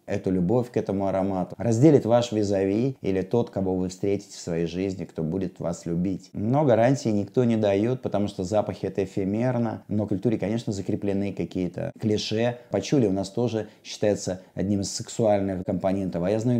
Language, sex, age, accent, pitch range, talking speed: Russian, male, 20-39, native, 100-125 Hz, 175 wpm